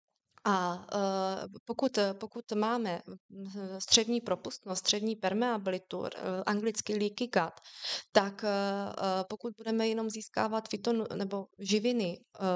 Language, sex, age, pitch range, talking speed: Slovak, female, 20-39, 195-215 Hz, 95 wpm